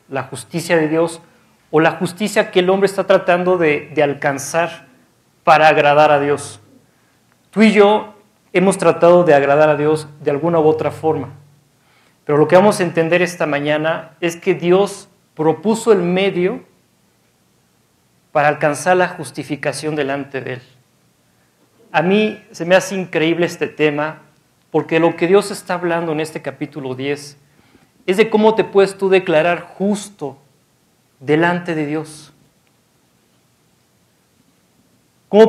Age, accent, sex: 40-59, Mexican, male